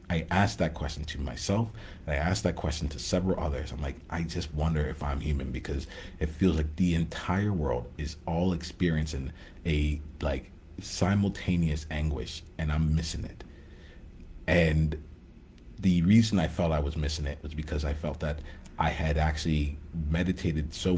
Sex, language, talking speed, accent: male, English, 165 wpm, American